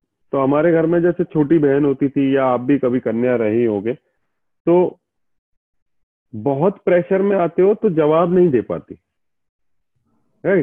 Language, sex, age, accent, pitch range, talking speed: Hindi, male, 40-59, native, 120-180 Hz, 160 wpm